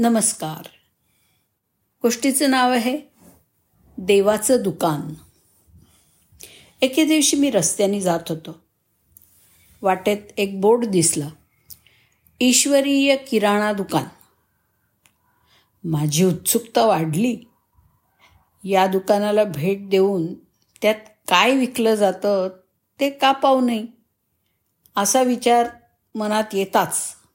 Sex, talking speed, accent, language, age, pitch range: female, 85 wpm, native, Marathi, 50-69, 170-235 Hz